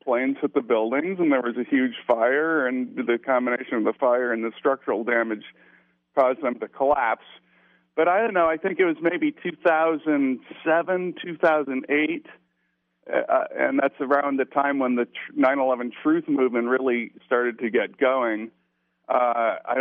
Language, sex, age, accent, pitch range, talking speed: English, male, 50-69, American, 120-150 Hz, 160 wpm